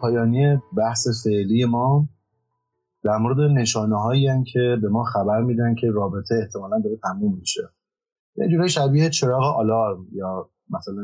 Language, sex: Persian, male